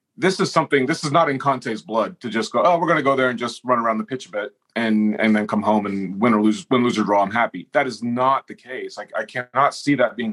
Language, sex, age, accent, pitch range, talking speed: English, male, 30-49, American, 110-150 Hz, 300 wpm